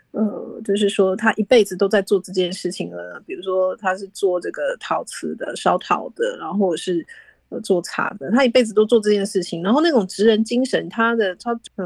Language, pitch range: Chinese, 190-240 Hz